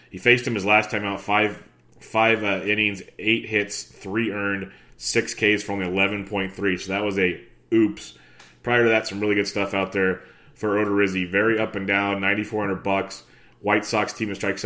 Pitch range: 95-105 Hz